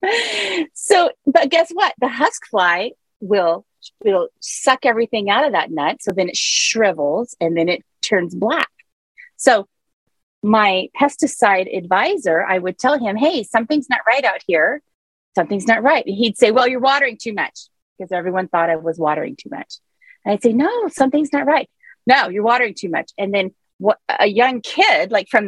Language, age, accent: English, 30-49, American